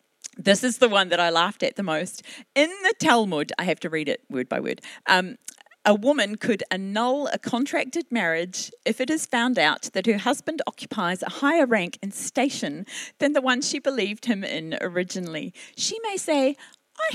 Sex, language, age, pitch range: female, English, 40-59, 200-295 Hz